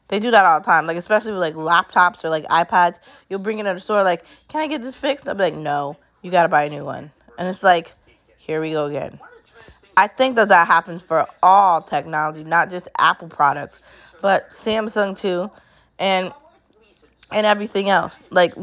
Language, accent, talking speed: English, American, 205 wpm